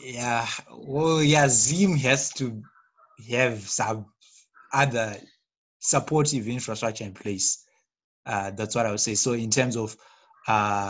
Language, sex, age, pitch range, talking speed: English, male, 20-39, 115-155 Hz, 130 wpm